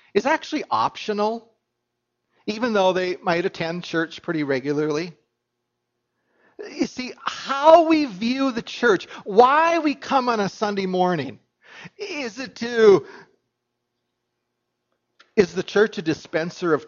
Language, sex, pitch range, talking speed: English, male, 180-250 Hz, 120 wpm